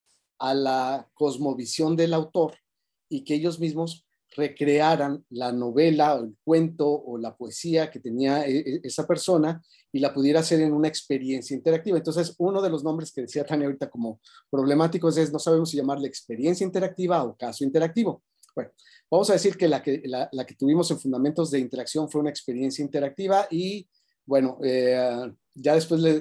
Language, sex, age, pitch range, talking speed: Spanish, male, 40-59, 130-165 Hz, 175 wpm